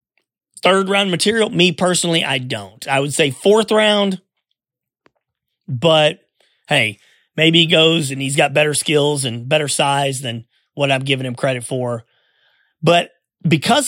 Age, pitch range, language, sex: 30-49, 135-175 Hz, English, male